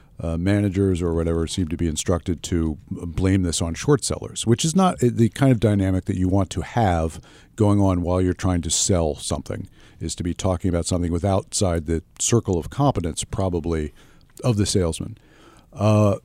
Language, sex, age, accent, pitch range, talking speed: English, male, 50-69, American, 85-105 Hz, 190 wpm